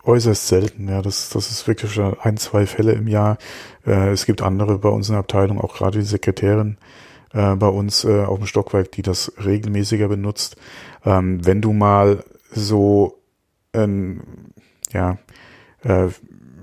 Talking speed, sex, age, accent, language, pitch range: 150 wpm, male, 40-59, German, German, 95-105 Hz